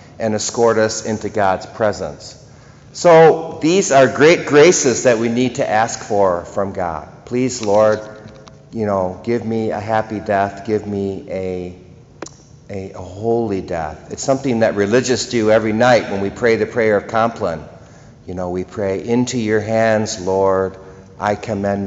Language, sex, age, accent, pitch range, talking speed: English, male, 50-69, American, 100-125 Hz, 160 wpm